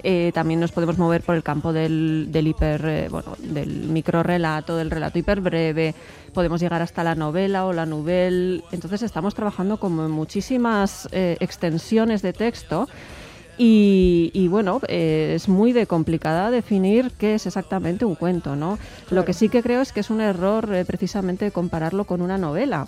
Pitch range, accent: 165-200 Hz, Spanish